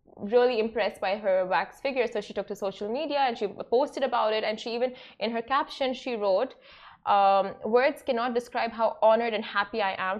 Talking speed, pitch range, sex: 205 wpm, 195-235 Hz, female